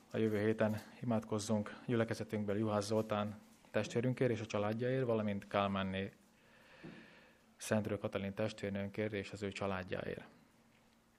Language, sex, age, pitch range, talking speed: Hungarian, male, 20-39, 100-110 Hz, 105 wpm